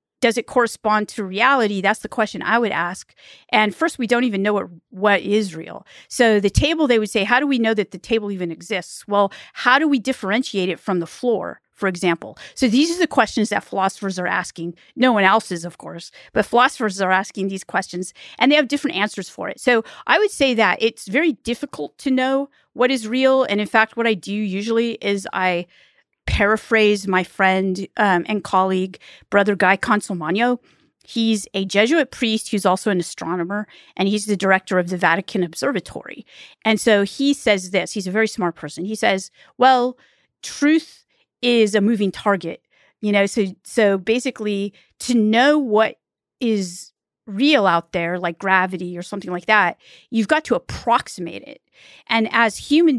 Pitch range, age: 185-235 Hz, 40-59